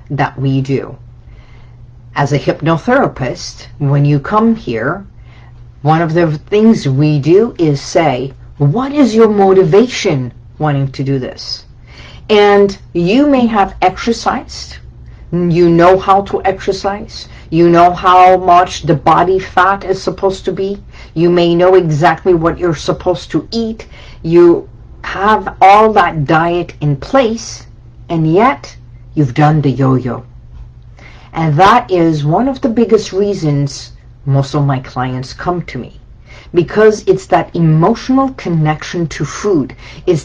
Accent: American